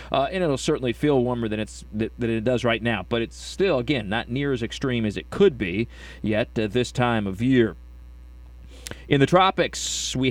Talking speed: 190 wpm